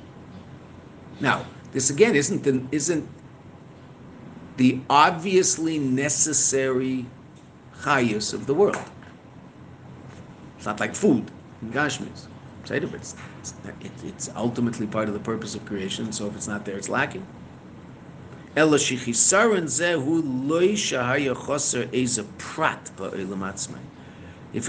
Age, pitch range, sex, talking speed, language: 50-69, 115-140 Hz, male, 85 wpm, English